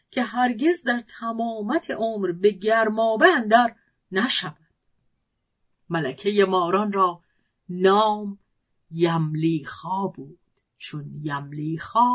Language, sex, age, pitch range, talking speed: Persian, female, 40-59, 165-235 Hz, 85 wpm